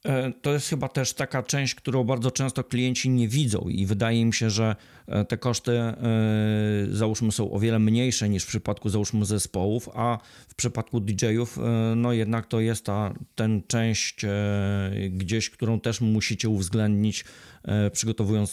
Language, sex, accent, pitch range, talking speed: Polish, male, native, 100-115 Hz, 150 wpm